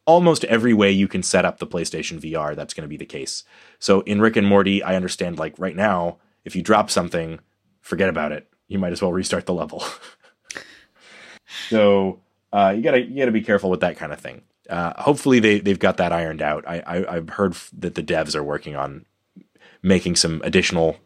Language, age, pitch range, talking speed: English, 30-49, 95-120 Hz, 200 wpm